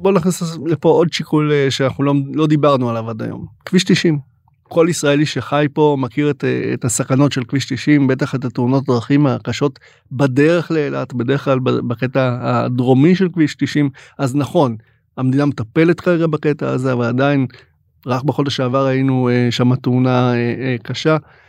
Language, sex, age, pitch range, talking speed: Hebrew, male, 30-49, 130-155 Hz, 155 wpm